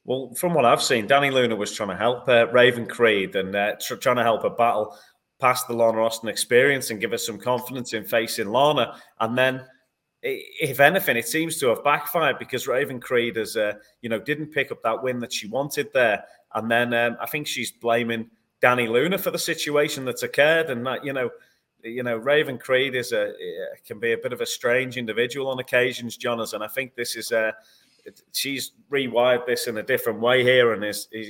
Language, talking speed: English, 215 wpm